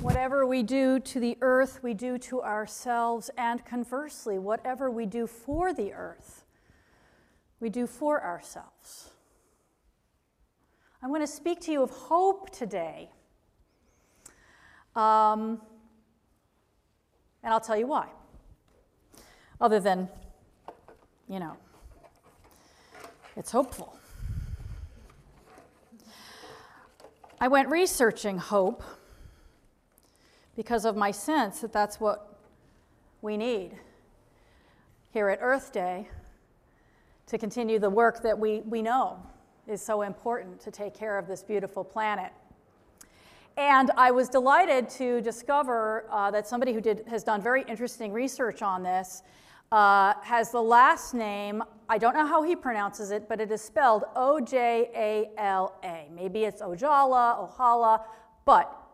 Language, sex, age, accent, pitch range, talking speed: English, female, 40-59, American, 210-255 Hz, 120 wpm